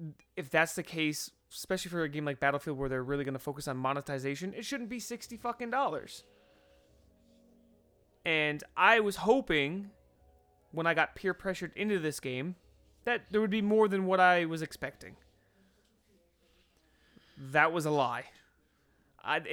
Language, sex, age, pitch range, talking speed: English, male, 30-49, 140-185 Hz, 155 wpm